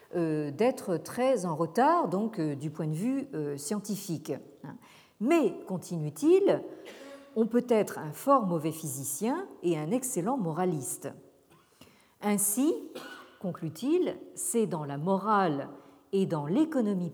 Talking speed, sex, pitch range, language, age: 110 wpm, female, 155-240 Hz, French, 50-69